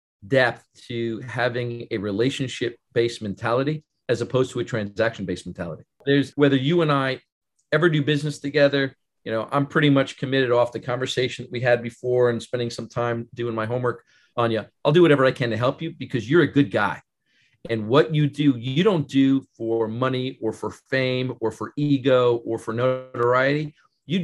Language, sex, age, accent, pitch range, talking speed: English, male, 40-59, American, 115-140 Hz, 190 wpm